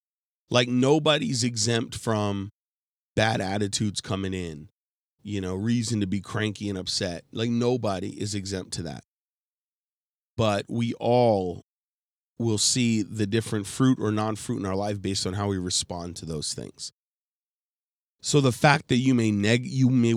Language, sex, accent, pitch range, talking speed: English, male, American, 100-120 Hz, 150 wpm